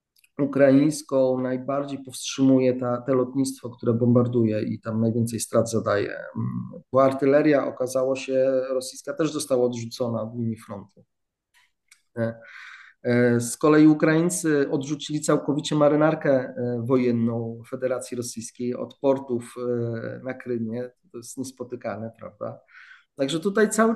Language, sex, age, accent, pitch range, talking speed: Polish, male, 40-59, native, 125-160 Hz, 110 wpm